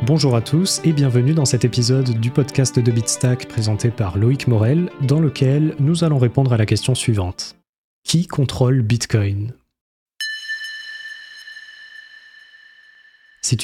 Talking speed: 130 wpm